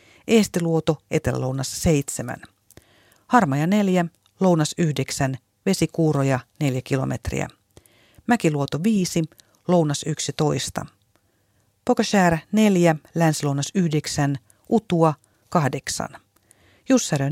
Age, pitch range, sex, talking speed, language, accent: 40-59, 135-180 Hz, female, 75 wpm, Finnish, native